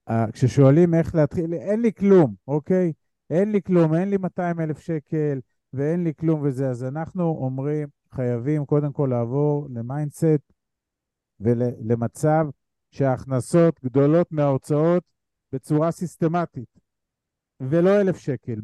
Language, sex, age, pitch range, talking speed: Hebrew, male, 50-69, 140-175 Hz, 120 wpm